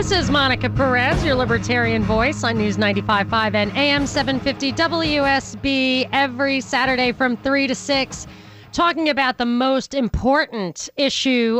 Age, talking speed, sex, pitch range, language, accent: 30-49, 135 wpm, female, 215-270 Hz, English, American